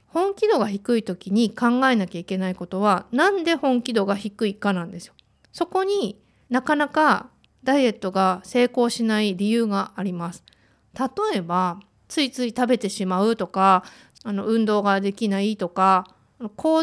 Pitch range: 190-255 Hz